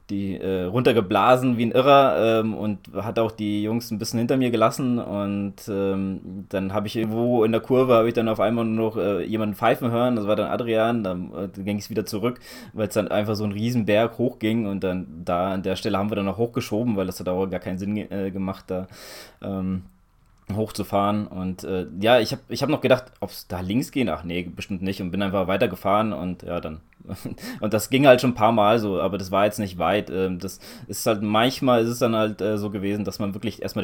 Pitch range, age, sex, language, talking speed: 95-110 Hz, 20-39, male, German, 235 wpm